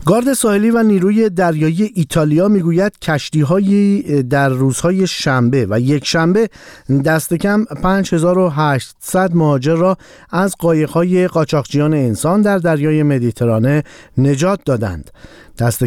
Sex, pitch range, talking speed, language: male, 130-180 Hz, 115 wpm, Persian